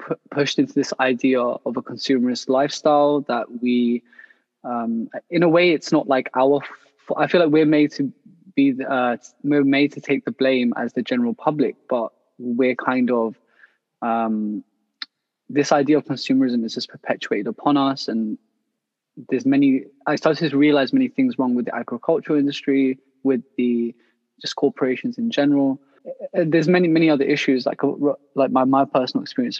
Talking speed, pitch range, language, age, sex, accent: 165 wpm, 130-155 Hz, English, 20-39, male, British